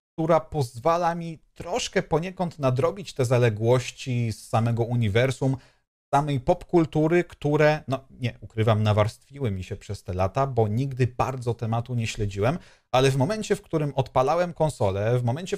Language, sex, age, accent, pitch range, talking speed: Polish, male, 40-59, native, 115-160 Hz, 145 wpm